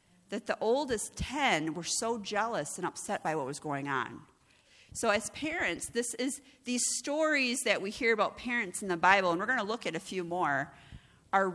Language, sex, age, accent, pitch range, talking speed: English, female, 40-59, American, 155-215 Hz, 205 wpm